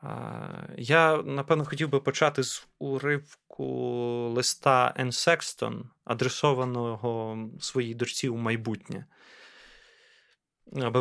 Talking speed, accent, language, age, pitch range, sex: 80 wpm, native, Ukrainian, 20-39, 120-155 Hz, male